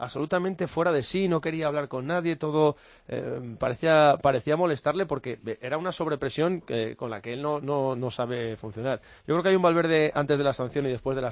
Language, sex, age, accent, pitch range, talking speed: Spanish, male, 20-39, Spanish, 125-150 Hz, 225 wpm